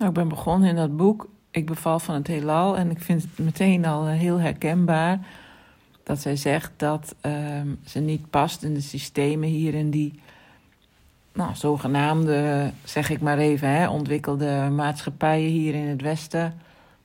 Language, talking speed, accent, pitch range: Dutch, 155 wpm, Dutch, 145-165 Hz